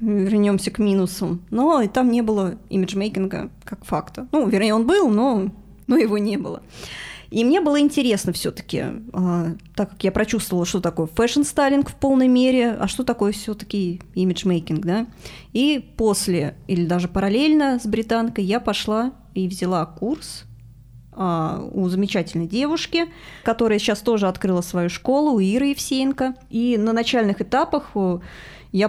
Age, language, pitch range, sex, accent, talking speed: 20-39, Russian, 185-235 Hz, female, native, 150 wpm